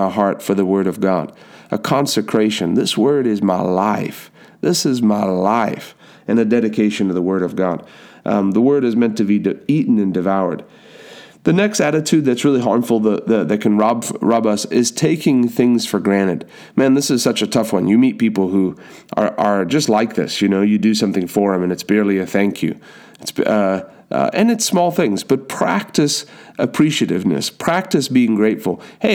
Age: 30-49